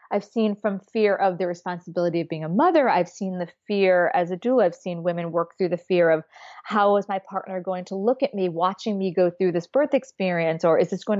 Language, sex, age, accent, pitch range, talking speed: English, female, 30-49, American, 175-230 Hz, 245 wpm